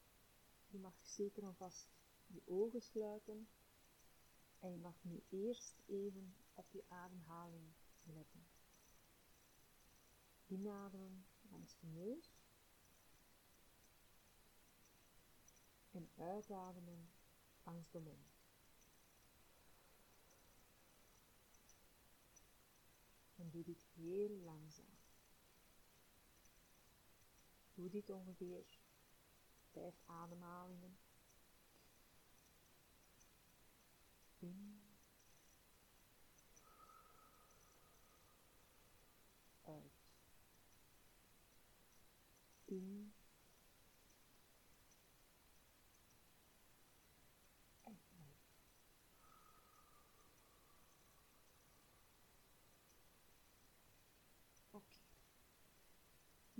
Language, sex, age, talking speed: Dutch, female, 50-69, 45 wpm